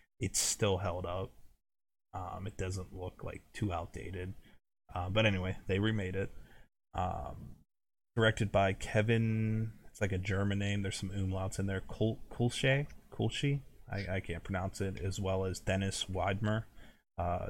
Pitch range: 90-105 Hz